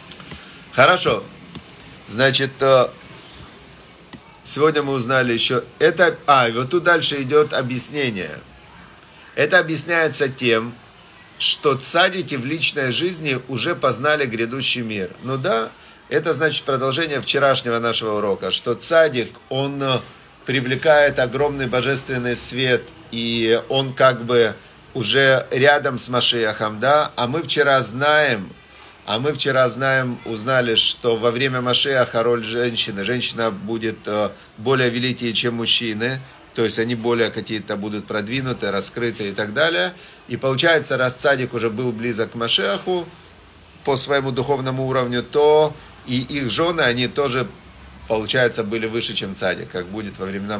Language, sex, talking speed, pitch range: Russian, male, 130 wpm, 115-140 Hz